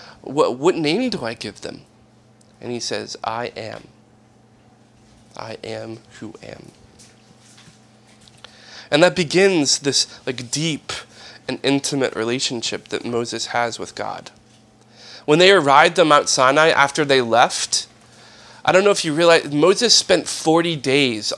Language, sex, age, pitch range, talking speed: English, male, 30-49, 110-160 Hz, 140 wpm